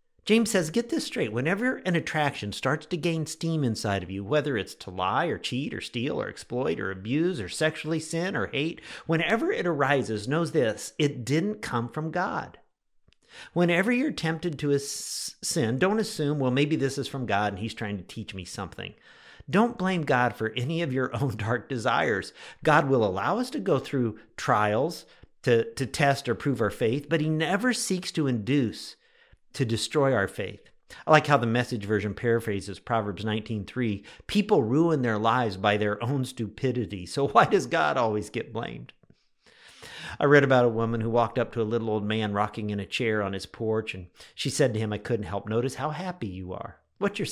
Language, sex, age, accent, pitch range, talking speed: English, male, 50-69, American, 110-155 Hz, 200 wpm